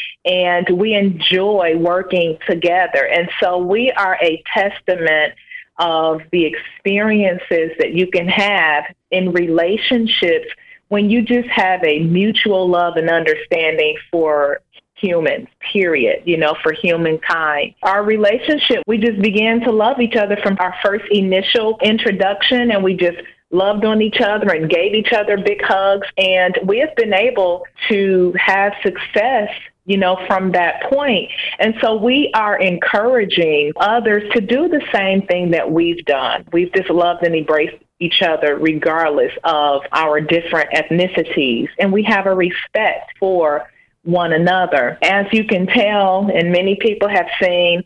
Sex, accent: female, American